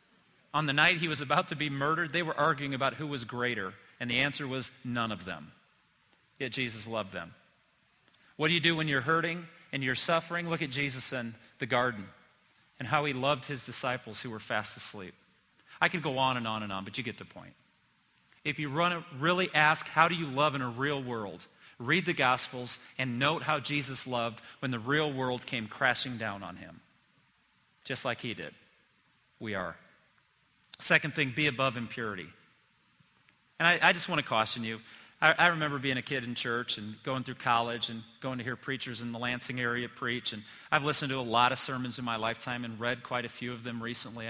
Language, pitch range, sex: English, 115-145 Hz, male